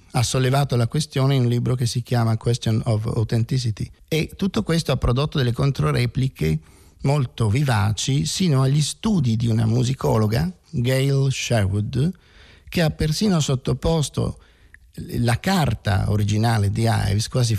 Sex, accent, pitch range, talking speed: male, native, 110-135 Hz, 135 wpm